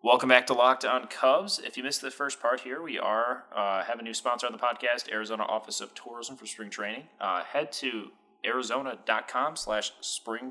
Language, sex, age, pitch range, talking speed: English, male, 20-39, 105-125 Hz, 205 wpm